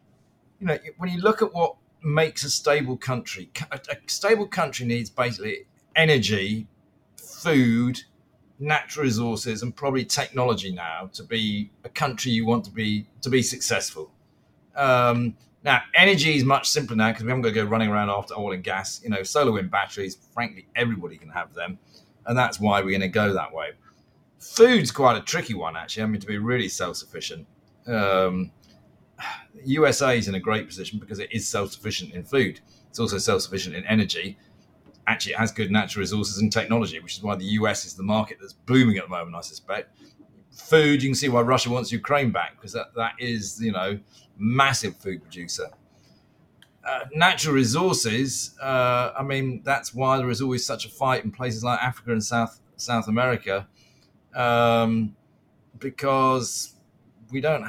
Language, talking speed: English, 175 wpm